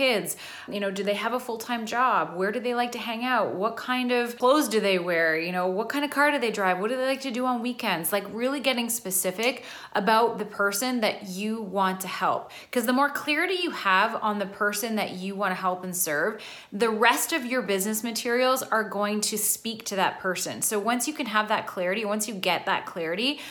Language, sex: English, female